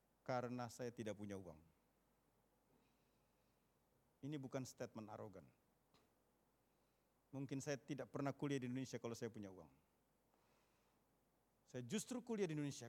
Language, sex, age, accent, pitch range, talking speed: Indonesian, male, 50-69, native, 120-160 Hz, 115 wpm